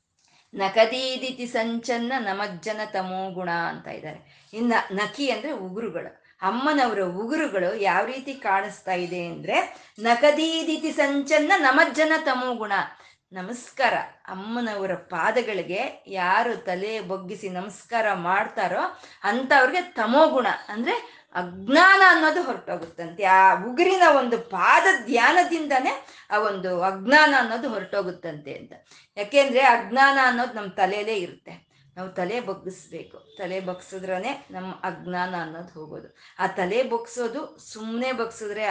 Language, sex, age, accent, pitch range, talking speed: Kannada, female, 20-39, native, 190-265 Hz, 110 wpm